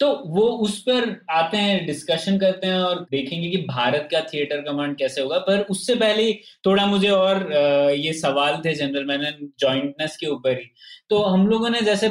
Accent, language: native, Hindi